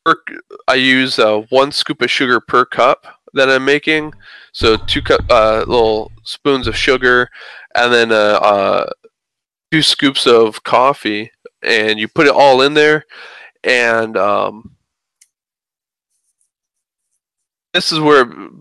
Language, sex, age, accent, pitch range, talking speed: English, male, 20-39, American, 110-145 Hz, 130 wpm